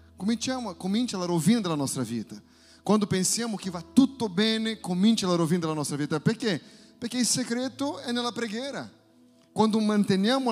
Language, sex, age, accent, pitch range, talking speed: Italian, male, 30-49, Brazilian, 165-220 Hz, 160 wpm